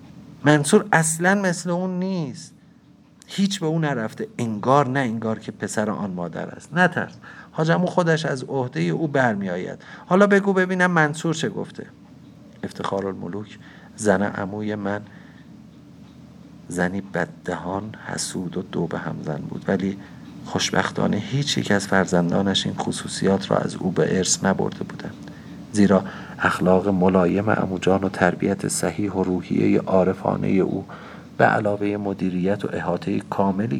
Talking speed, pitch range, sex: 130 wpm, 90-135 Hz, male